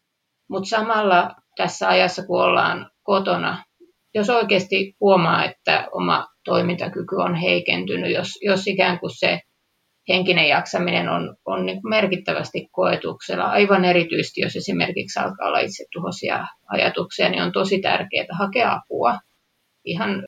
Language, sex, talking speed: Finnish, female, 120 wpm